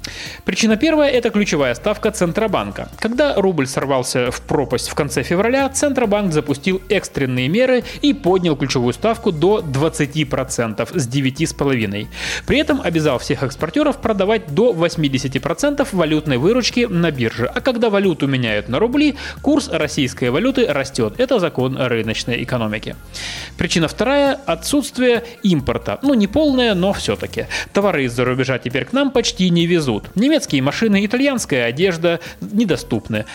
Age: 30-49